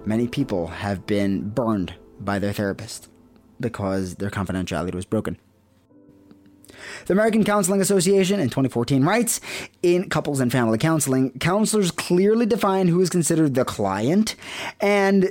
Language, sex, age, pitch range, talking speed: English, male, 20-39, 115-180 Hz, 135 wpm